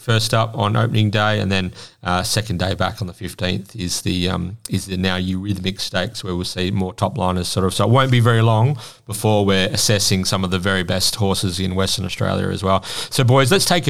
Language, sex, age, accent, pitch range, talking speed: English, male, 30-49, Australian, 95-120 Hz, 235 wpm